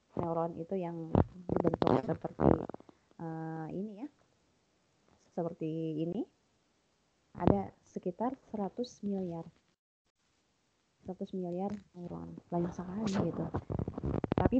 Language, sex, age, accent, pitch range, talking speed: Indonesian, female, 20-39, native, 175-220 Hz, 80 wpm